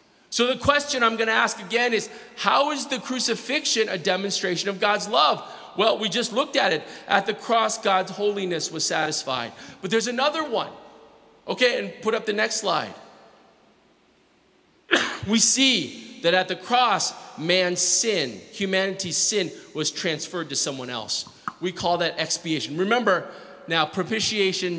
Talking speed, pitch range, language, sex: 155 wpm, 165-225 Hz, English, male